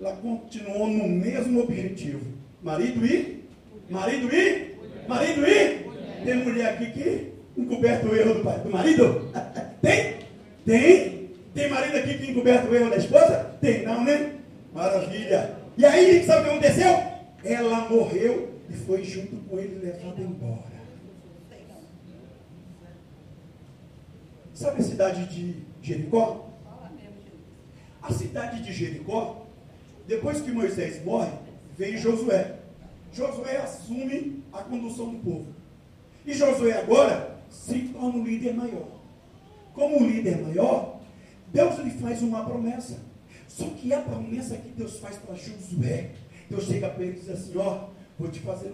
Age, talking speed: 40-59, 135 wpm